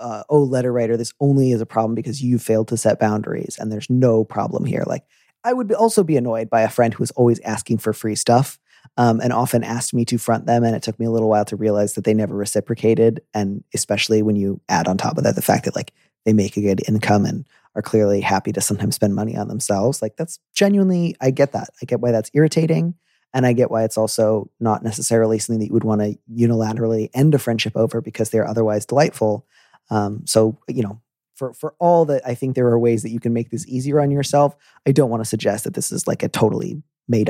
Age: 30-49